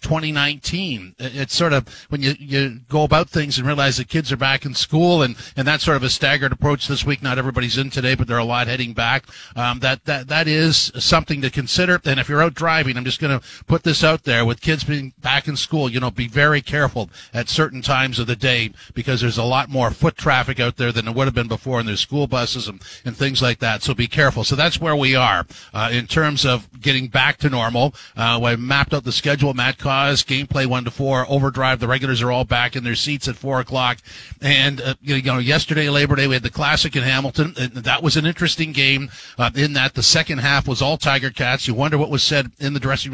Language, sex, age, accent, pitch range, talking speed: English, male, 50-69, American, 125-150 Hz, 250 wpm